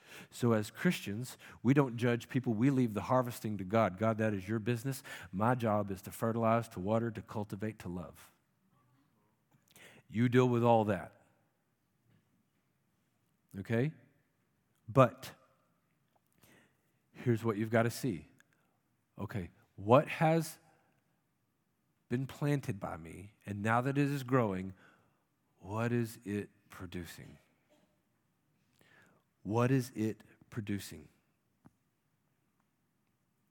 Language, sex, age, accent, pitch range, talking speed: English, male, 50-69, American, 105-135 Hz, 115 wpm